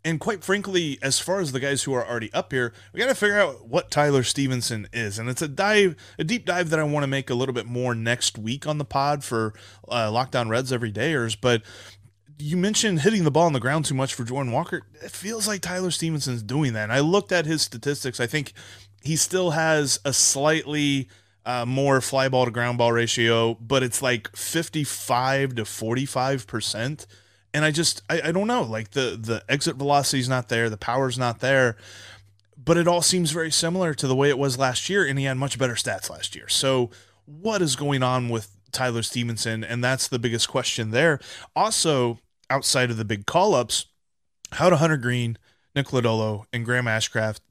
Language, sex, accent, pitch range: English, male, American, 115-150 Hz